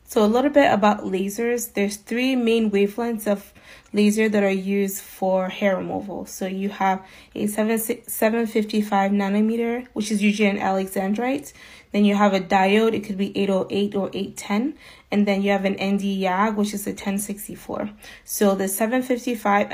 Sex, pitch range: female, 195-220 Hz